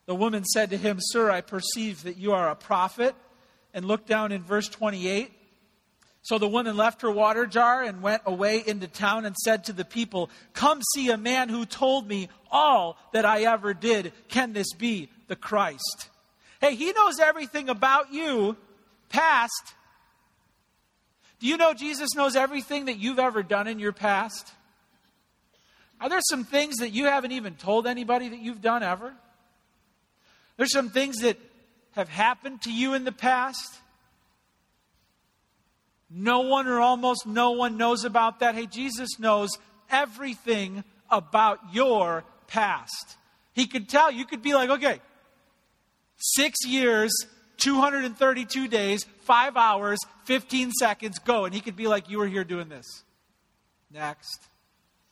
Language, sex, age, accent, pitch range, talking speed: English, male, 40-59, American, 205-255 Hz, 155 wpm